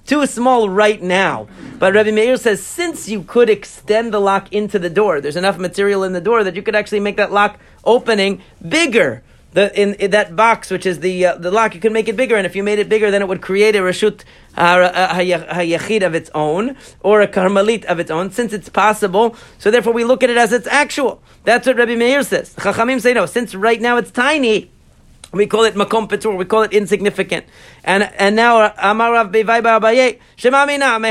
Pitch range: 190-230 Hz